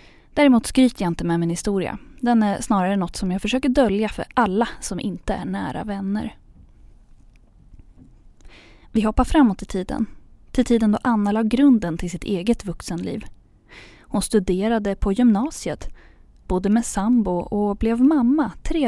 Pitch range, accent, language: 190-250 Hz, native, Swedish